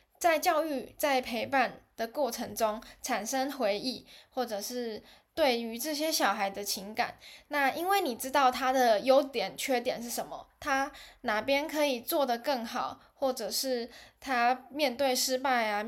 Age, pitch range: 10-29, 230-295 Hz